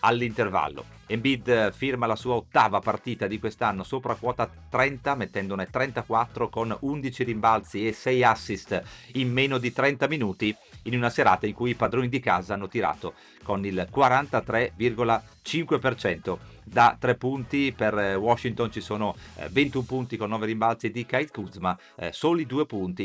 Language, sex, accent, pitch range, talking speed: Italian, male, native, 105-130 Hz, 150 wpm